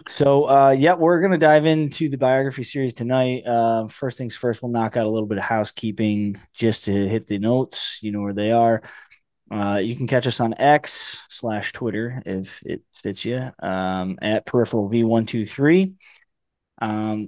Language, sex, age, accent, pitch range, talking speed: English, male, 20-39, American, 100-125 Hz, 175 wpm